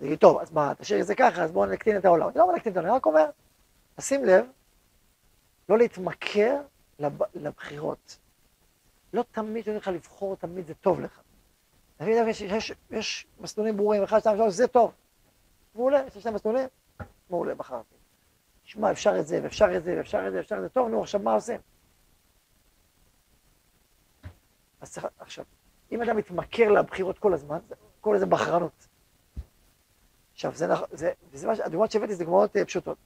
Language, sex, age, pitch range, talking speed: Hebrew, male, 40-59, 185-225 Hz, 65 wpm